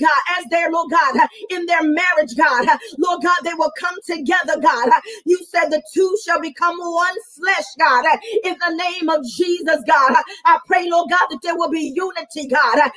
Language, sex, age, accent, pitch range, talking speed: English, female, 40-59, American, 325-365 Hz, 190 wpm